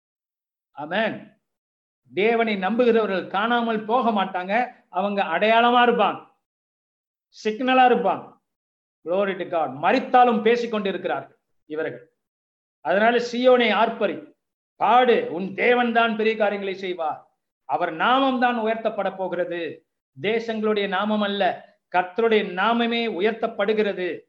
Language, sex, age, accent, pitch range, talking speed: Tamil, male, 50-69, native, 170-230 Hz, 85 wpm